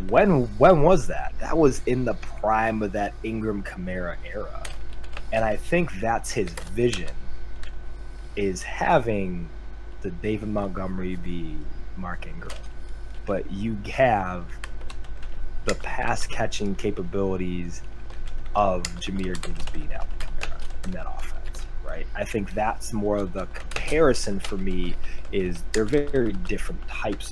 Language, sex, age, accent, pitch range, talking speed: English, male, 20-39, American, 90-110 Hz, 130 wpm